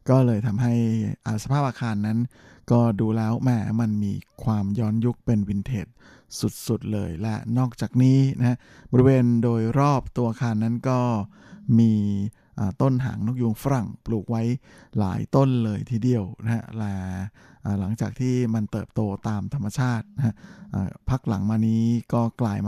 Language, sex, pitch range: Thai, male, 105-125 Hz